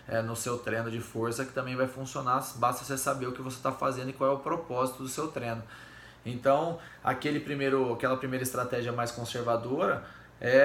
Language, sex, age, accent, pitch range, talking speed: Portuguese, male, 20-39, Brazilian, 125-150 Hz, 180 wpm